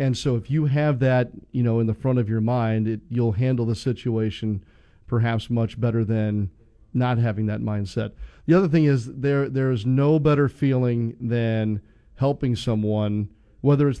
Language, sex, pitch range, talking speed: English, male, 115-140 Hz, 180 wpm